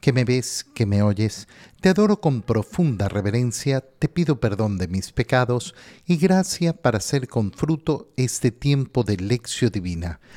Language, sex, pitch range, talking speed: Spanish, male, 105-145 Hz, 160 wpm